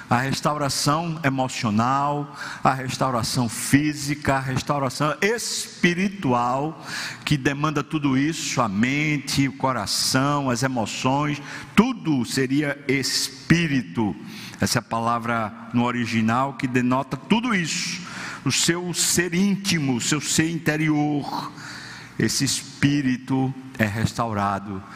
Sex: male